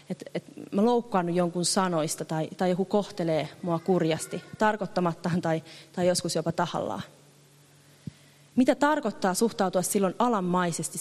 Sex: female